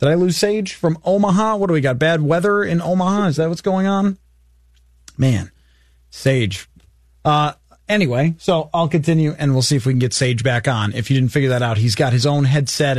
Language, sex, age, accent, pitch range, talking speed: English, male, 30-49, American, 130-170 Hz, 215 wpm